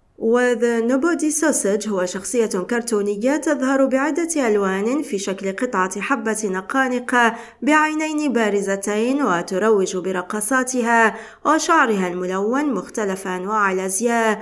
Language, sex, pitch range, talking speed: Arabic, female, 195-255 Hz, 95 wpm